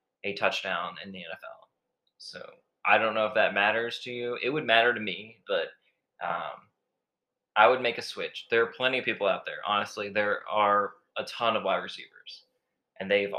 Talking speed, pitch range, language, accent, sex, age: 190 wpm, 100-120 Hz, English, American, male, 20-39